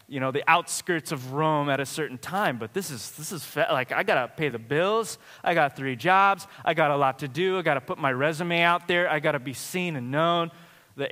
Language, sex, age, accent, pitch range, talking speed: English, male, 20-39, American, 155-205 Hz, 245 wpm